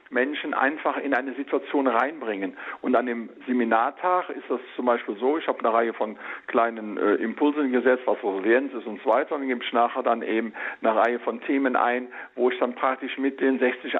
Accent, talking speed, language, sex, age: German, 215 wpm, German, male, 50-69